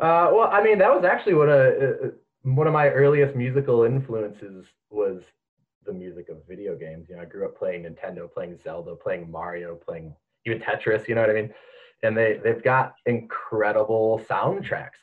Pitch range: 100-165 Hz